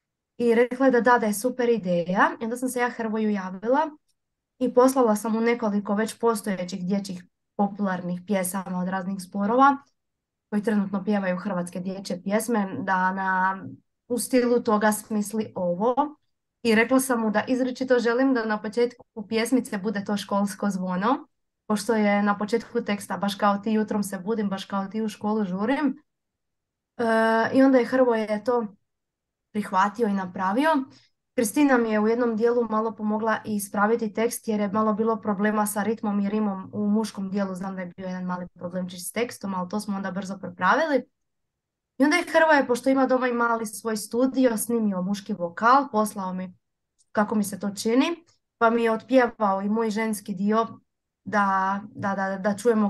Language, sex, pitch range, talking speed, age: Croatian, female, 200-235 Hz, 175 wpm, 20-39